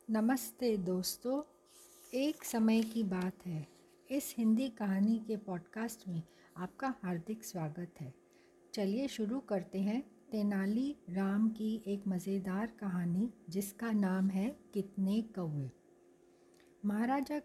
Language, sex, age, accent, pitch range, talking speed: Hindi, female, 60-79, native, 185-245 Hz, 115 wpm